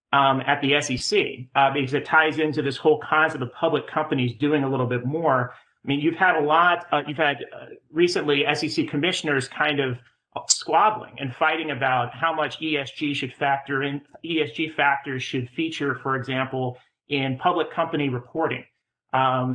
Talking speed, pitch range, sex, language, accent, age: 170 wpm, 130-150 Hz, male, English, American, 40-59